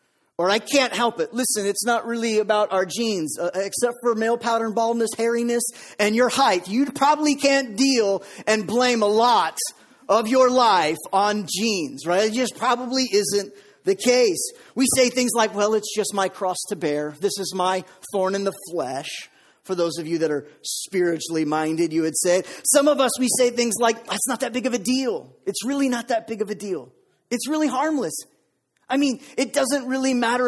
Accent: American